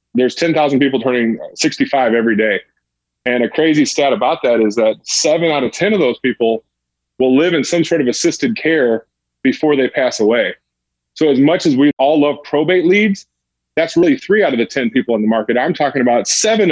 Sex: male